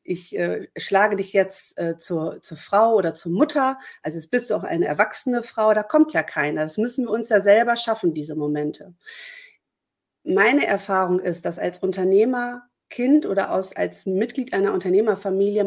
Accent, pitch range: German, 190-225 Hz